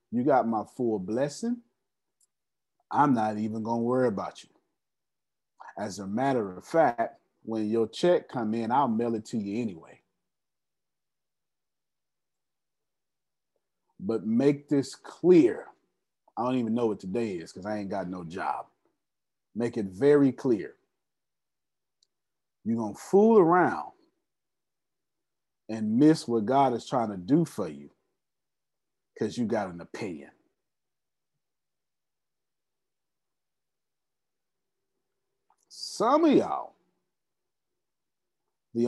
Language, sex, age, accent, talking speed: English, male, 30-49, American, 115 wpm